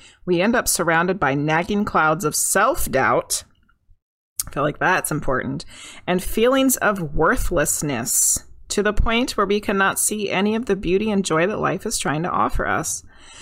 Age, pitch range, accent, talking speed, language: 30-49, 160-215 Hz, American, 160 wpm, English